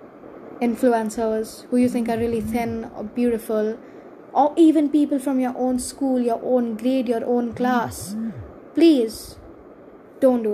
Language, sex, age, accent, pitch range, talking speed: English, female, 10-29, Indian, 220-255 Hz, 140 wpm